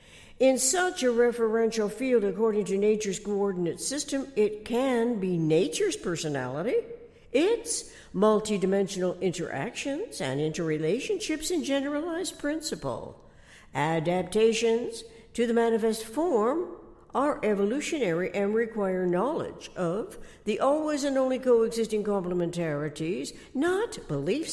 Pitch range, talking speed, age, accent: 185-245 Hz, 105 wpm, 60-79, American